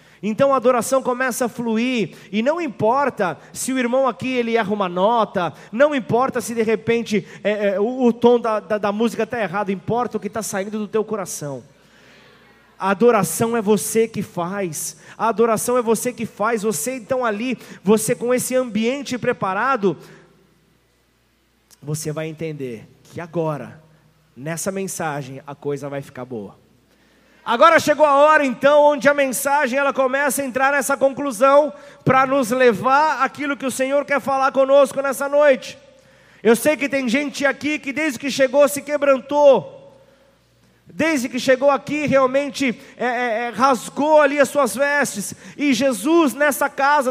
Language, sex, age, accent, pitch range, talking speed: Portuguese, male, 20-39, Brazilian, 210-280 Hz, 155 wpm